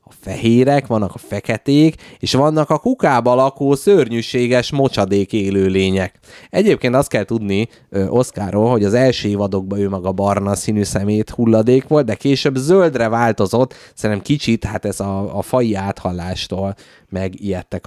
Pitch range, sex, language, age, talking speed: 100-125 Hz, male, Hungarian, 20-39, 140 wpm